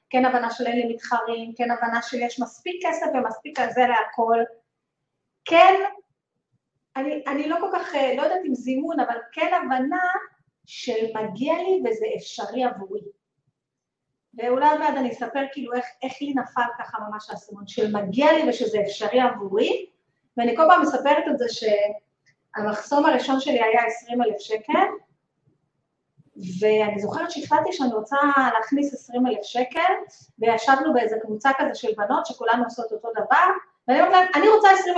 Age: 30-49